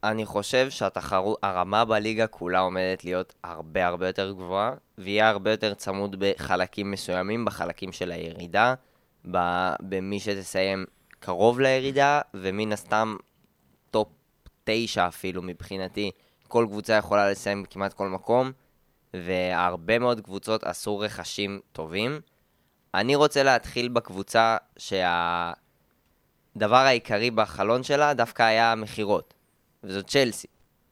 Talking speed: 110 wpm